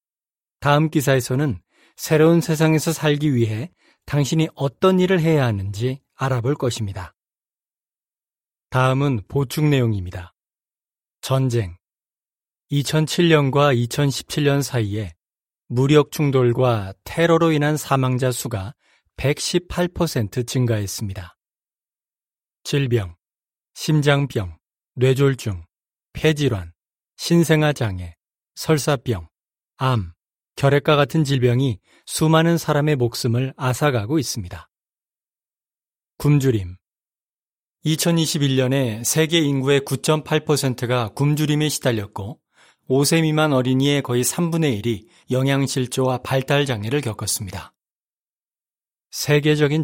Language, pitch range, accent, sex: Korean, 115-150 Hz, native, male